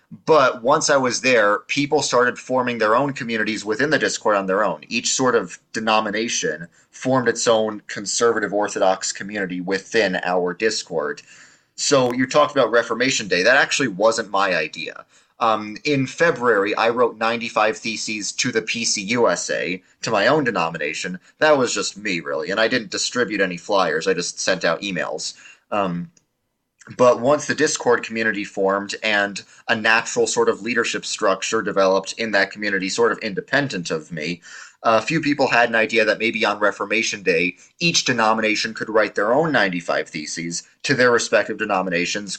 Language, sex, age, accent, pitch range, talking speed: English, male, 30-49, American, 100-125 Hz, 165 wpm